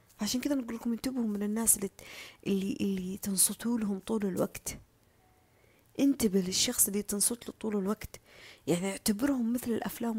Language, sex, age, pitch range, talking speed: Arabic, female, 20-39, 195-260 Hz, 135 wpm